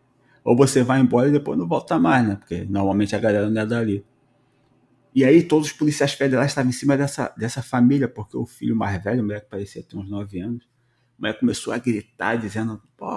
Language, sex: Portuguese, male